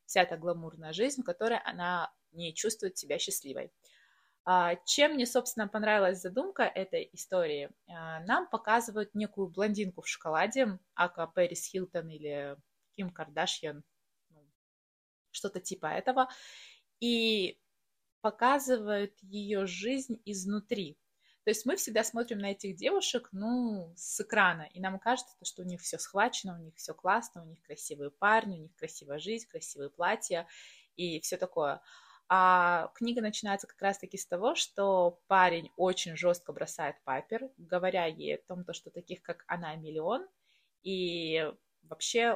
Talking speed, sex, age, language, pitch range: 140 wpm, female, 20-39, Russian, 170-225 Hz